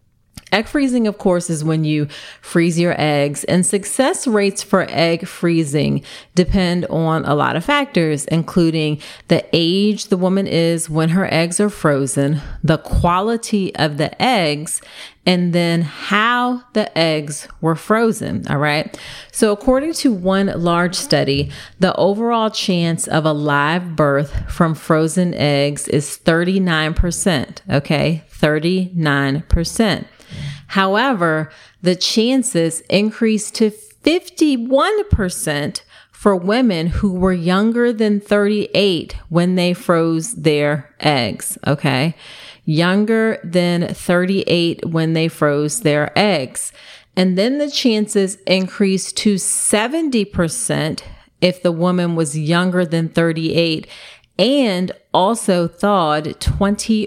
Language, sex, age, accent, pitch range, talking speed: English, female, 30-49, American, 155-205 Hz, 120 wpm